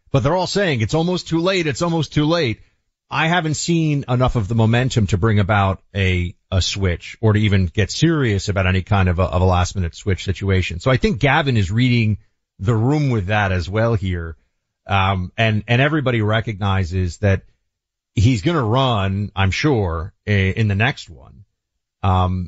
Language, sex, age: English, male, 40-59